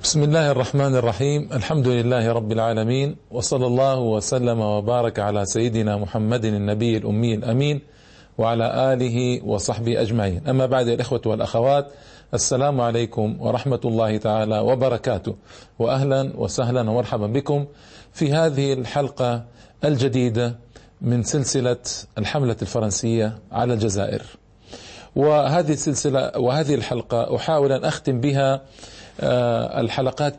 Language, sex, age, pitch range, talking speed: Arabic, male, 40-59, 115-145 Hz, 110 wpm